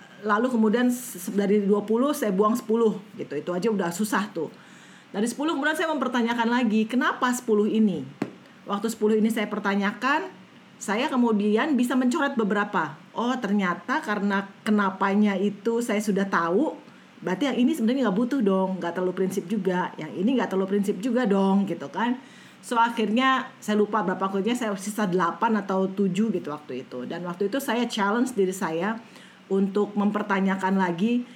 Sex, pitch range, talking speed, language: female, 195-230 Hz, 160 wpm, Indonesian